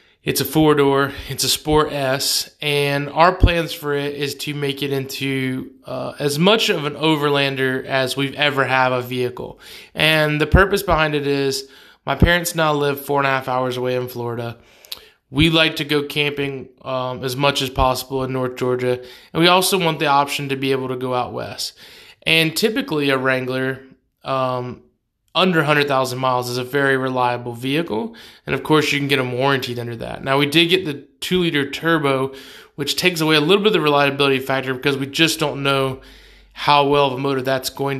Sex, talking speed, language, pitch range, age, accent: male, 200 wpm, English, 130-150 Hz, 20-39, American